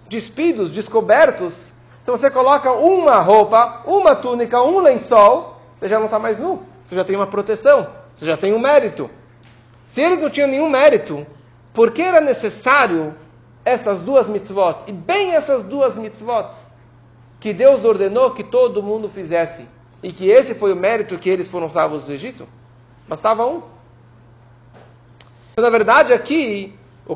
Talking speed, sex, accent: 155 wpm, male, Brazilian